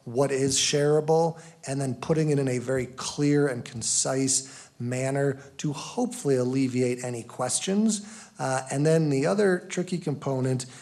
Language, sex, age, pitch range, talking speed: English, male, 40-59, 125-150 Hz, 145 wpm